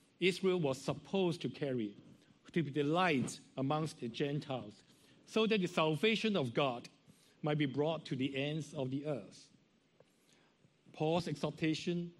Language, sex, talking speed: English, male, 145 wpm